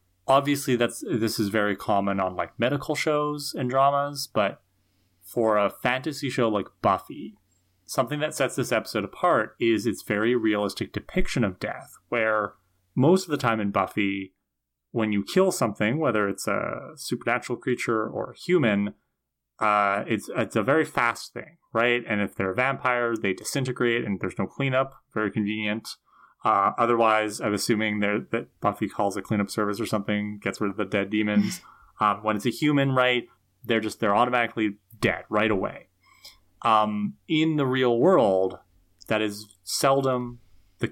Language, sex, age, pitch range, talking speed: English, male, 30-49, 100-125 Hz, 165 wpm